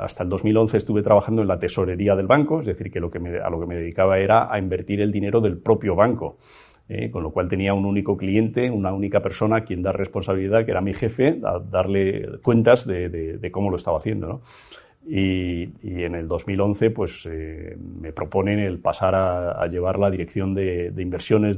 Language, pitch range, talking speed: Spanish, 90-110 Hz, 215 wpm